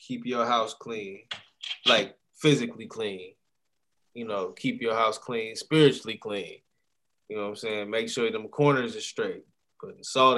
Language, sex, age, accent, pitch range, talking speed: English, male, 20-39, American, 115-140 Hz, 160 wpm